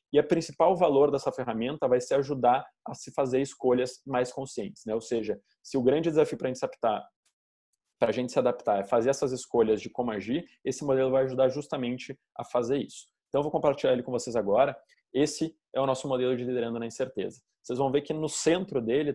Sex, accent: male, Brazilian